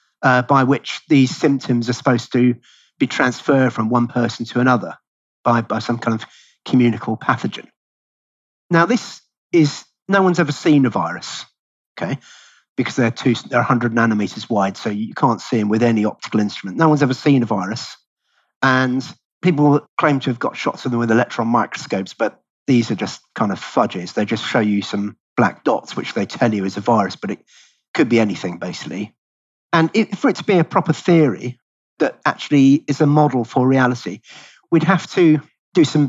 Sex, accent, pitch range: male, British, 115-150 Hz